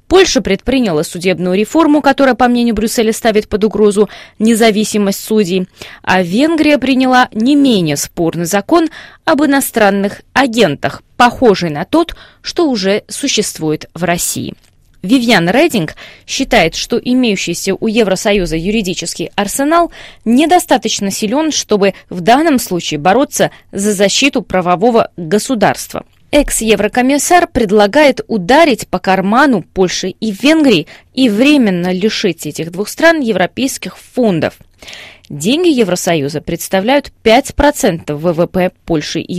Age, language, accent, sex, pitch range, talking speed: 20-39, Russian, native, female, 185-265 Hz, 115 wpm